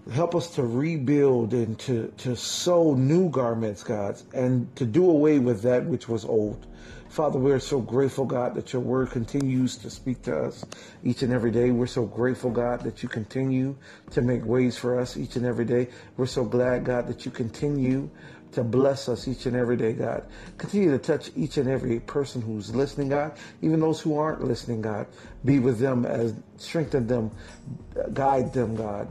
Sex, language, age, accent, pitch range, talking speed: male, English, 50-69, American, 115-135 Hz, 190 wpm